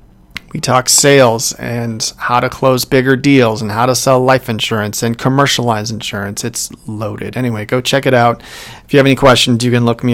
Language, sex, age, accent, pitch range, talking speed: English, male, 40-59, American, 110-125 Hz, 200 wpm